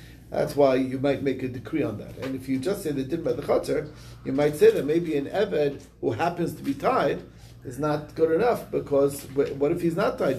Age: 40-59